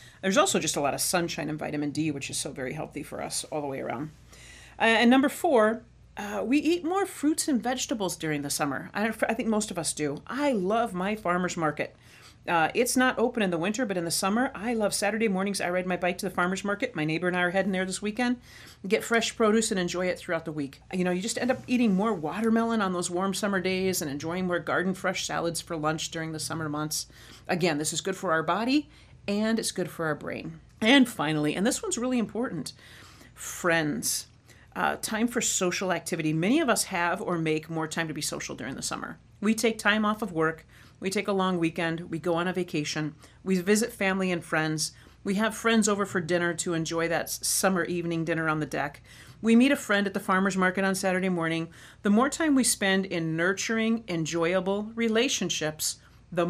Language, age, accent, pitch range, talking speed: English, 40-59, American, 165-220 Hz, 225 wpm